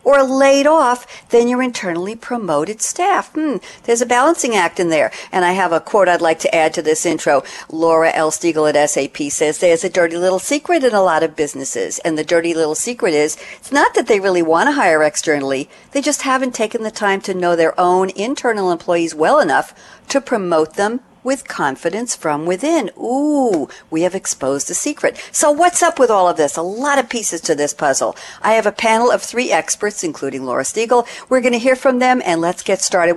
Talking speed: 215 wpm